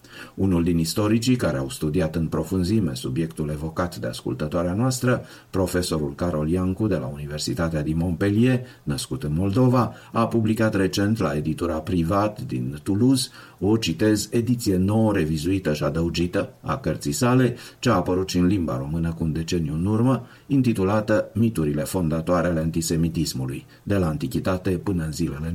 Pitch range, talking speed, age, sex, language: 80-110 Hz, 155 wpm, 50-69, male, Romanian